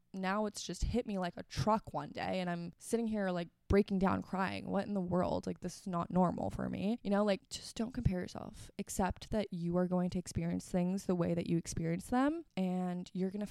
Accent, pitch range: American, 180-215 Hz